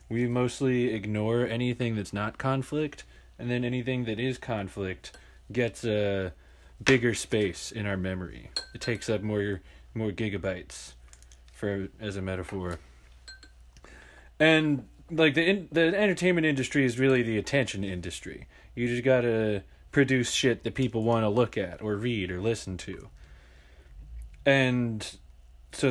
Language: English